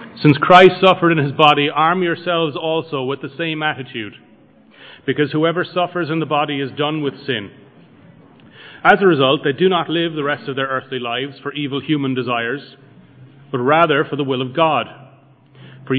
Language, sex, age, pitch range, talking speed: English, male, 40-59, 130-155 Hz, 180 wpm